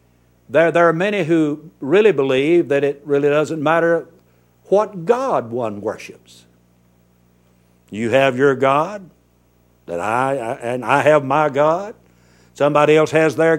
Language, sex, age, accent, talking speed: English, male, 60-79, American, 140 wpm